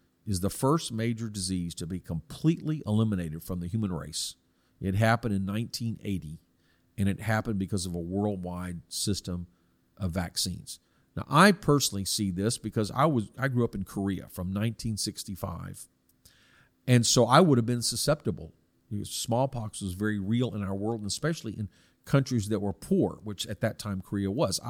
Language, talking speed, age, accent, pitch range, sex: English, 165 wpm, 50-69, American, 95-120 Hz, male